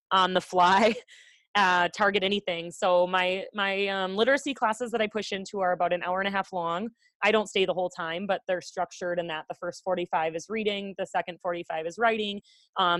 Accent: American